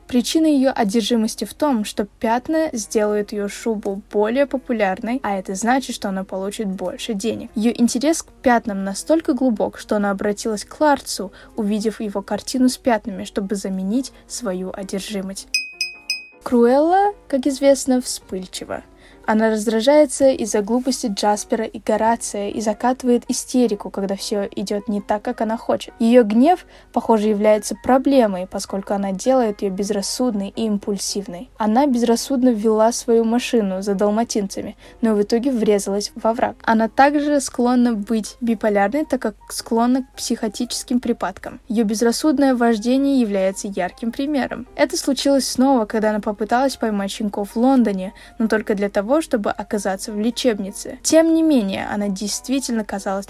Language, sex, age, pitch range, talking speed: Russian, female, 10-29, 210-255 Hz, 145 wpm